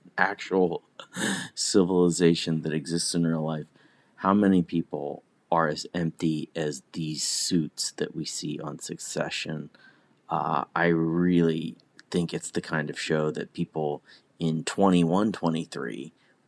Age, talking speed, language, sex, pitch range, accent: 30-49, 125 wpm, English, male, 80-100 Hz, American